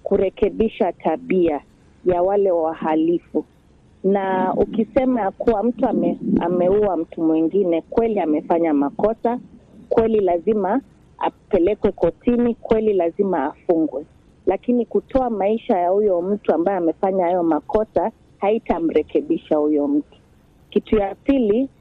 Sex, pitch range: female, 170-225 Hz